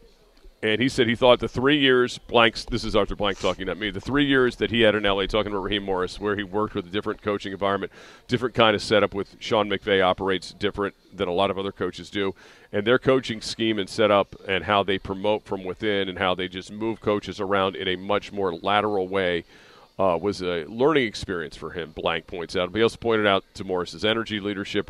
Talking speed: 230 wpm